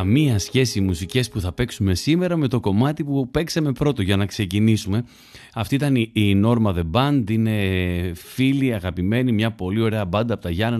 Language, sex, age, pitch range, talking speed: Greek, male, 30-49, 100-140 Hz, 180 wpm